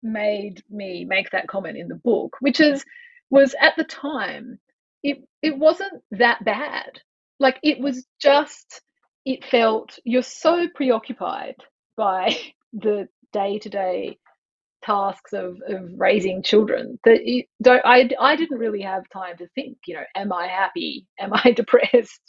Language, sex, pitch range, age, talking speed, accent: English, female, 200-270 Hz, 30-49, 150 wpm, Australian